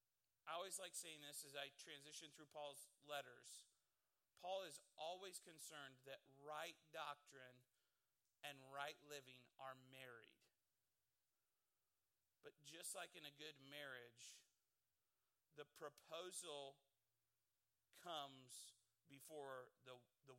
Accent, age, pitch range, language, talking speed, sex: American, 40-59, 135-170 Hz, English, 105 wpm, male